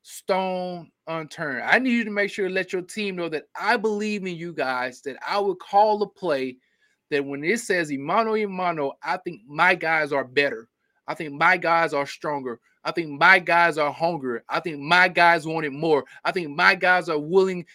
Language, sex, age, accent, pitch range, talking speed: English, male, 20-39, American, 155-205 Hz, 210 wpm